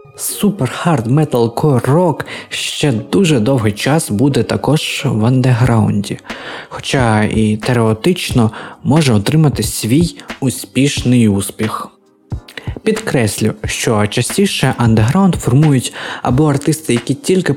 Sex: male